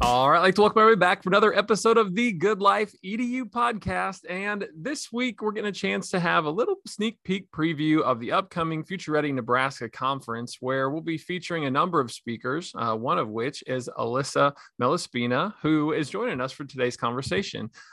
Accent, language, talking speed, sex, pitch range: American, English, 200 wpm, male, 130-190 Hz